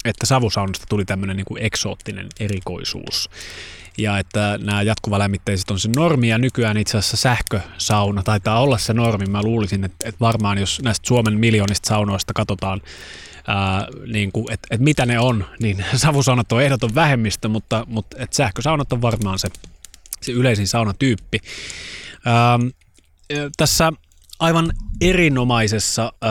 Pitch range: 100-120 Hz